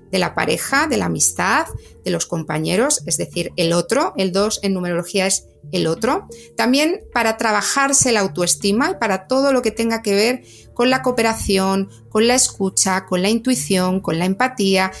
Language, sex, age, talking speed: Spanish, female, 30-49, 180 wpm